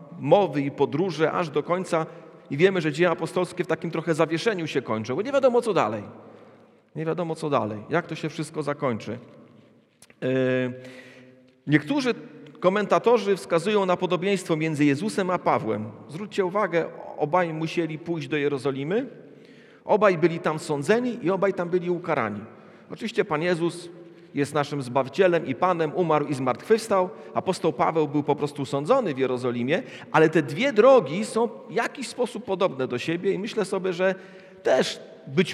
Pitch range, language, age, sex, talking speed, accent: 150-195 Hz, Polish, 40-59, male, 155 wpm, native